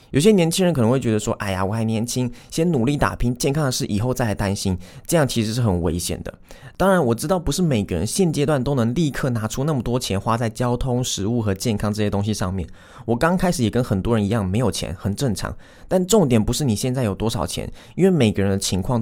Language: Chinese